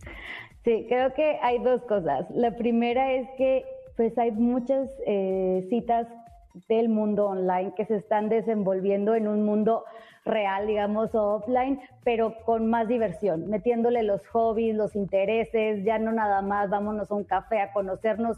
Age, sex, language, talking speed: 30-49, female, Spanish, 155 wpm